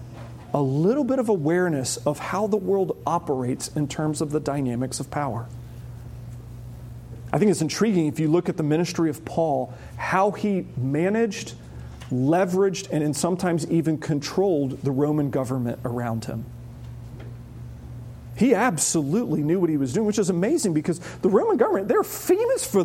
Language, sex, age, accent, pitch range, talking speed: English, male, 40-59, American, 120-195 Hz, 155 wpm